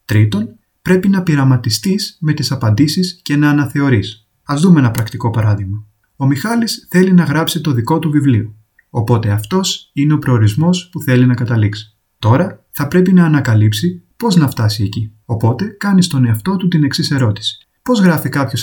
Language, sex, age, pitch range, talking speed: Greek, male, 30-49, 115-175 Hz, 170 wpm